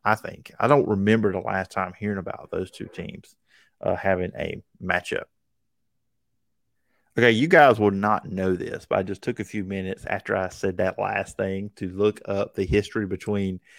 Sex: male